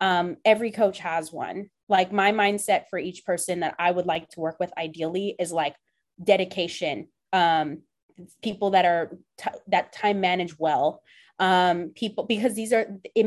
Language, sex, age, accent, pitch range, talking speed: English, female, 20-39, American, 185-225 Hz, 165 wpm